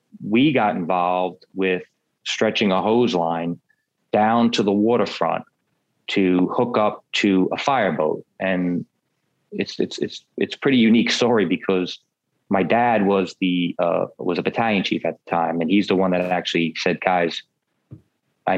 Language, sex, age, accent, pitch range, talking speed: English, male, 30-49, American, 90-105 Hz, 155 wpm